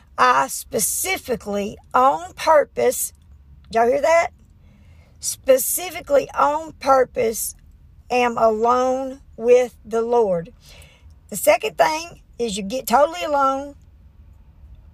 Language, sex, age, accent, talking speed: English, female, 60-79, American, 90 wpm